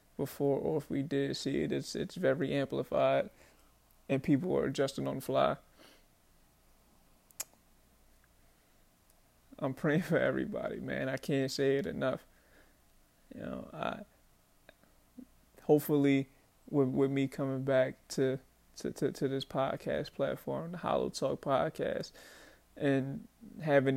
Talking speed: 125 wpm